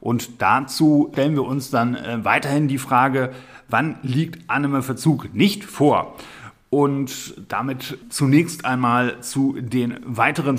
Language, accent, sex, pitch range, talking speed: German, German, male, 115-140 Hz, 125 wpm